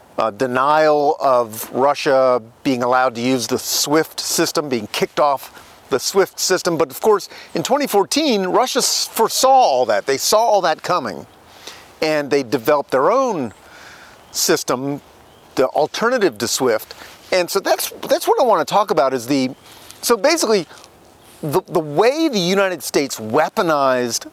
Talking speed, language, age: 155 wpm, English, 40-59